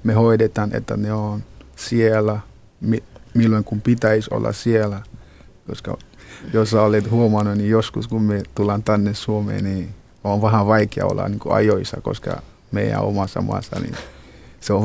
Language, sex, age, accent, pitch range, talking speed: Finnish, male, 30-49, native, 100-115 Hz, 150 wpm